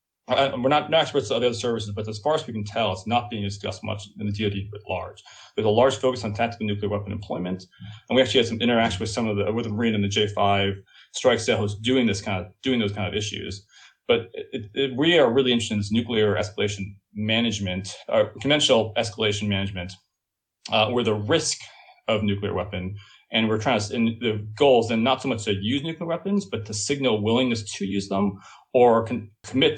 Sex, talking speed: male, 225 wpm